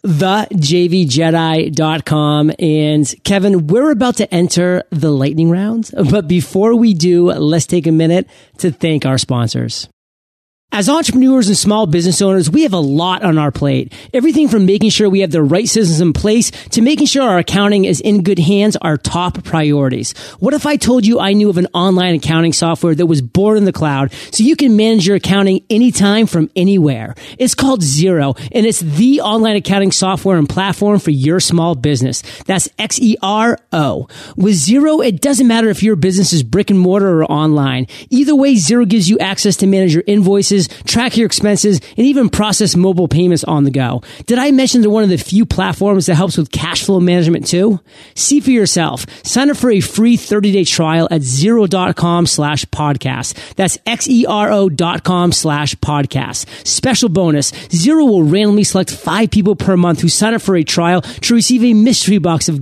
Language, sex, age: English, male, 30-49